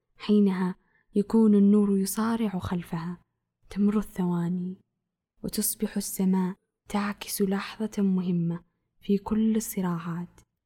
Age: 10-29